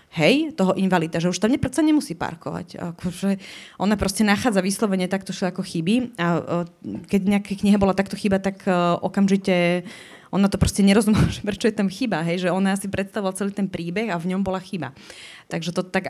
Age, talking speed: 20-39, 185 wpm